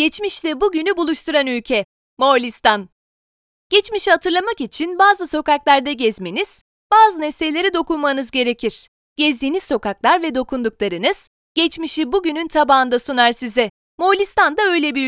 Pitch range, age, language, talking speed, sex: 255-345 Hz, 30-49, Turkish, 110 wpm, female